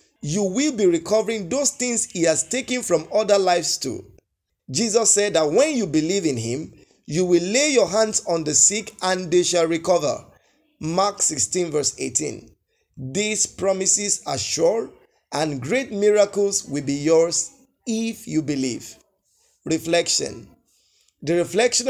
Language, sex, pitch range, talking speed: English, male, 170-230 Hz, 145 wpm